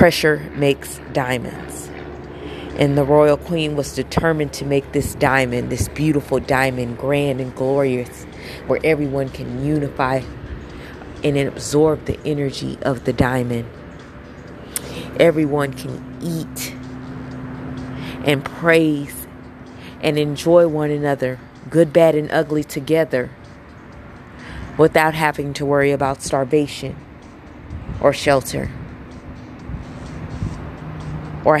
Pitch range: 130-150 Hz